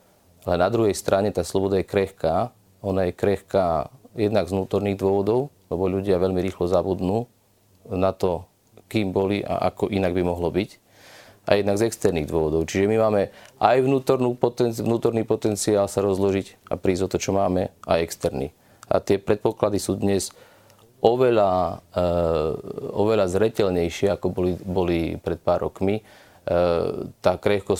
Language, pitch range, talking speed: Slovak, 90-105 Hz, 145 wpm